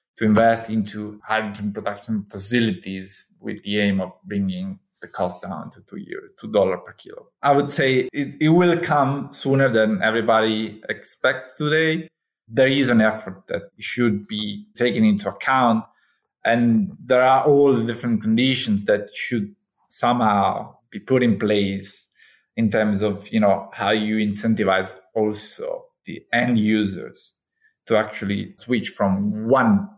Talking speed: 150 wpm